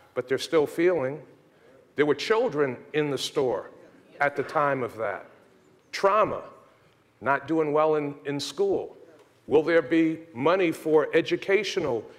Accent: American